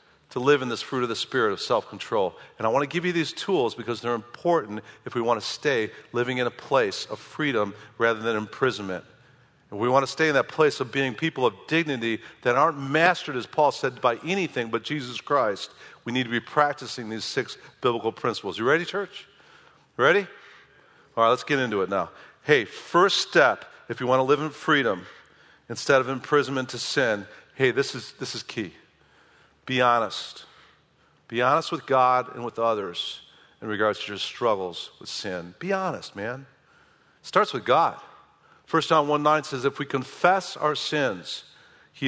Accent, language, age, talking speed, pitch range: American, English, 50-69, 190 wpm, 120-160 Hz